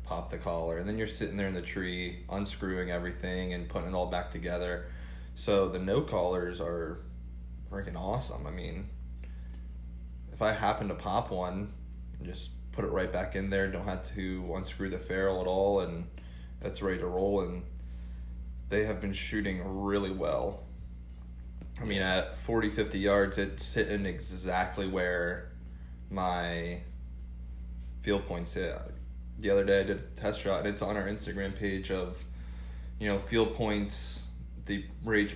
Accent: American